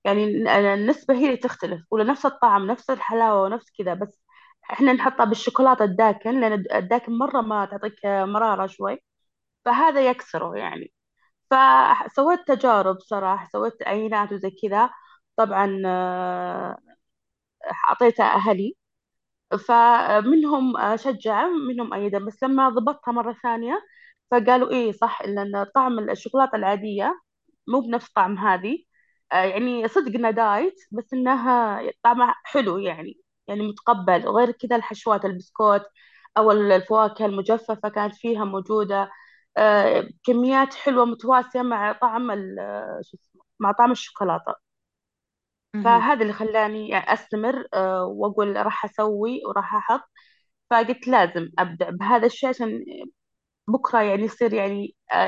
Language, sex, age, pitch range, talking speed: Arabic, female, 20-39, 200-250 Hz, 110 wpm